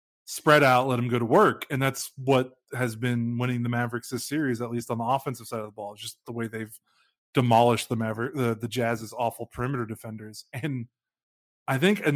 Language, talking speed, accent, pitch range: English, 210 wpm, American, 115-130 Hz